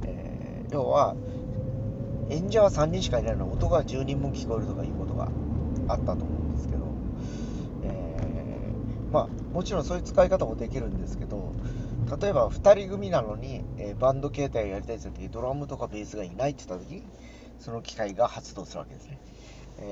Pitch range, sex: 80-130 Hz, male